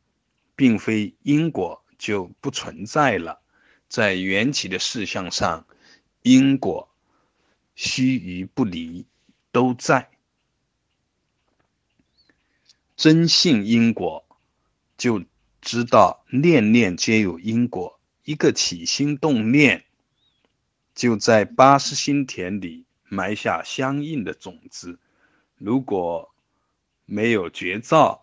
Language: Chinese